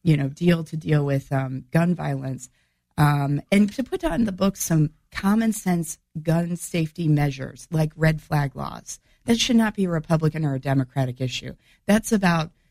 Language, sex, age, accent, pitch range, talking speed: English, female, 40-59, American, 140-180 Hz, 180 wpm